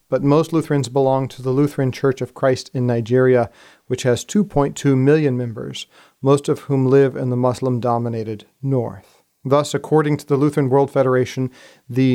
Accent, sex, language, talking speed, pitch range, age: American, male, English, 165 wpm, 125-145 Hz, 40-59